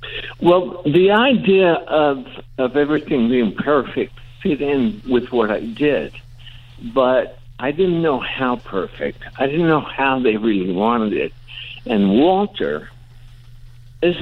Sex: male